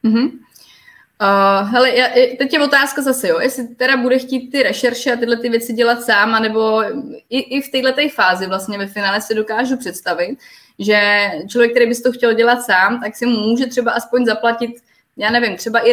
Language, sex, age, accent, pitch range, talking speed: Czech, female, 20-39, native, 205-240 Hz, 190 wpm